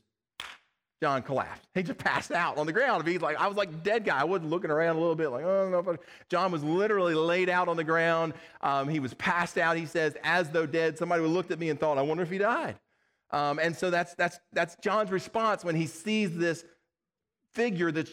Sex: male